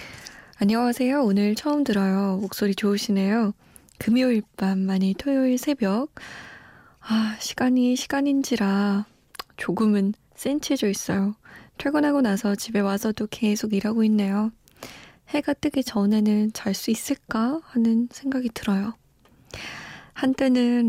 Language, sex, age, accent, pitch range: Korean, female, 20-39, native, 195-245 Hz